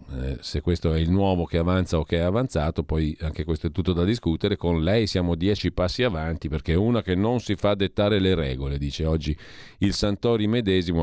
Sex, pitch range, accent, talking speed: male, 80-105 Hz, native, 220 wpm